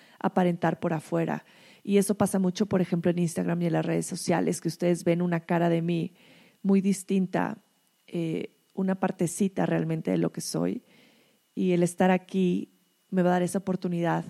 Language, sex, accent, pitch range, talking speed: Spanish, female, Mexican, 170-195 Hz, 180 wpm